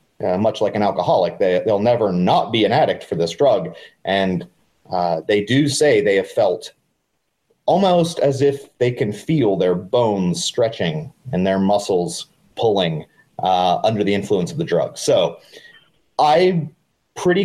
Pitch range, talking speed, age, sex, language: 100-160 Hz, 160 wpm, 30-49, male, English